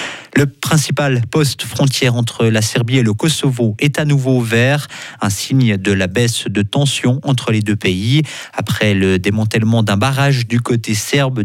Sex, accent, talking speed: male, French, 175 wpm